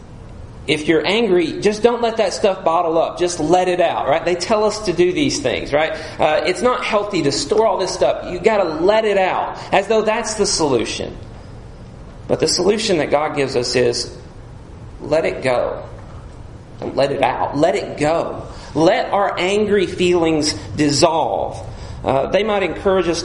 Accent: American